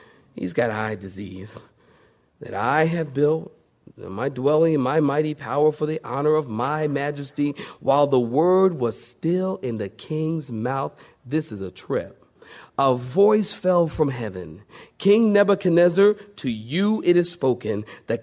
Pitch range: 130-180 Hz